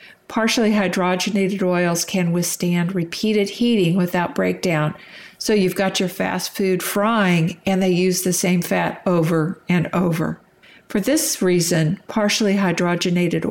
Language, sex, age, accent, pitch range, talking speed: English, female, 50-69, American, 175-200 Hz, 135 wpm